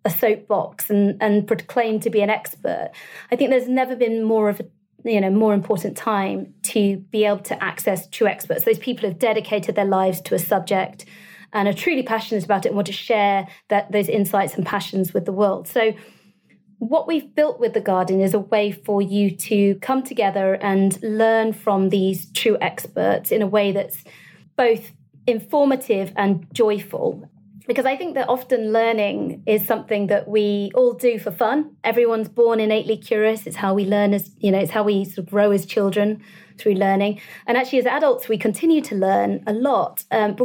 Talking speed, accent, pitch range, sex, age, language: 195 wpm, British, 200-245 Hz, female, 30-49, English